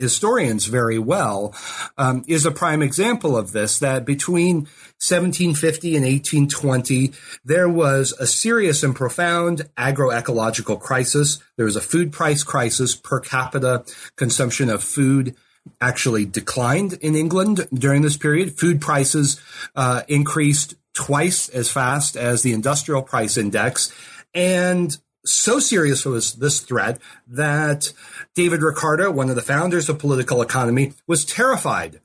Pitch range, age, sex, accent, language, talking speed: 125-165 Hz, 30-49, male, American, English, 135 wpm